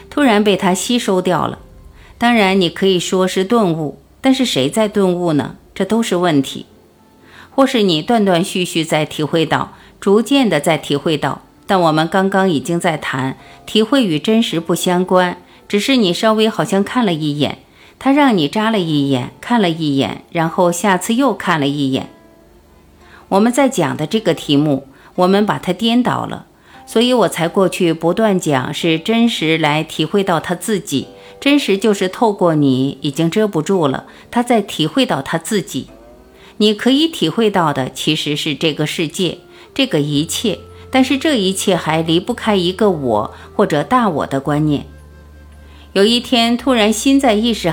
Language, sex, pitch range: Chinese, female, 150-220 Hz